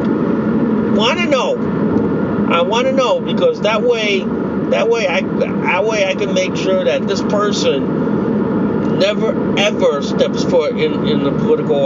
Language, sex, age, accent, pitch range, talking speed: English, male, 40-59, American, 220-245 Hz, 150 wpm